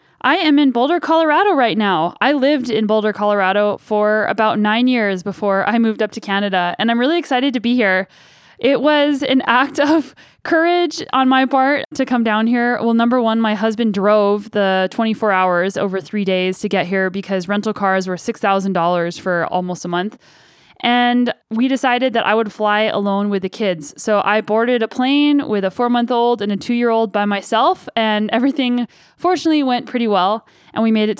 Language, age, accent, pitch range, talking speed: English, 10-29, American, 205-250 Hz, 190 wpm